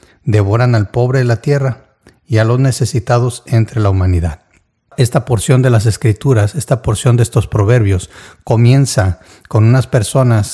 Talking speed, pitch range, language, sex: 155 wpm, 100-125 Hz, Spanish, male